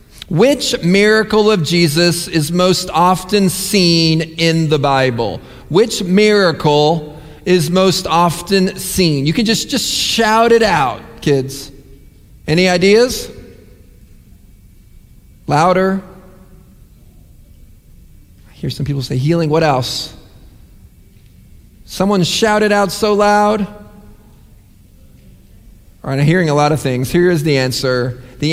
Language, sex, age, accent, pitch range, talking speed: English, male, 40-59, American, 145-215 Hz, 110 wpm